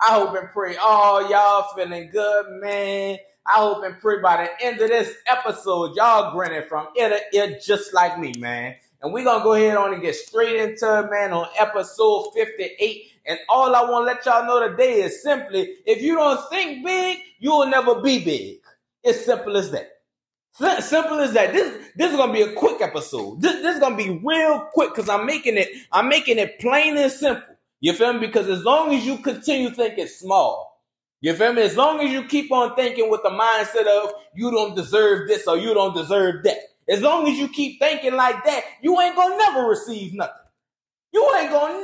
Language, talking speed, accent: English, 220 wpm, American